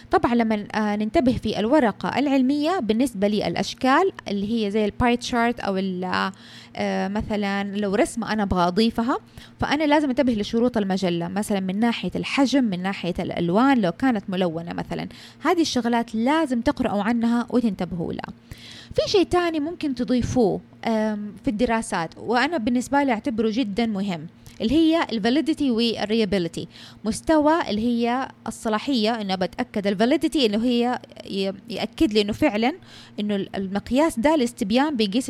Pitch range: 200-270 Hz